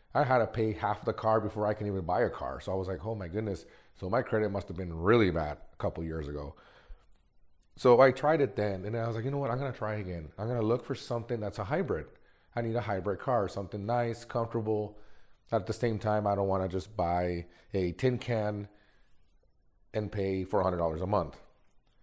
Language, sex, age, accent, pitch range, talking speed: English, male, 30-49, American, 90-115 Hz, 230 wpm